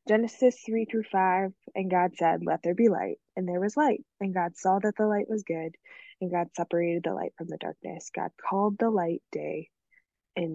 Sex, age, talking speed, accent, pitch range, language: female, 20-39, 210 wpm, American, 170-210 Hz, English